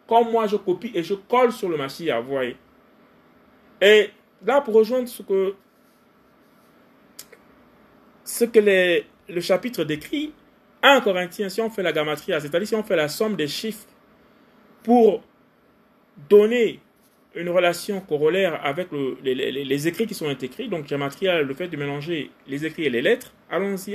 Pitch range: 170-225 Hz